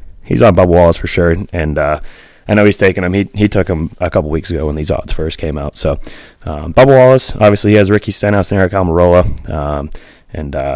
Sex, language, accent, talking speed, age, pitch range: male, English, American, 230 wpm, 20-39, 80-100 Hz